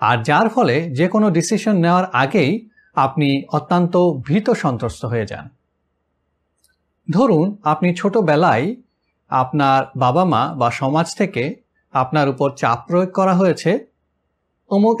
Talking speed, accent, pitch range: 55 wpm, native, 130-200 Hz